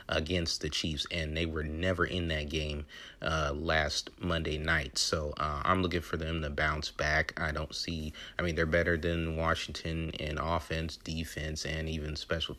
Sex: male